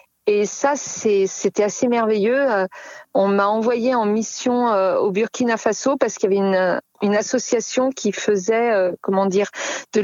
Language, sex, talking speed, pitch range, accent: French, female, 165 wpm, 195-245 Hz, French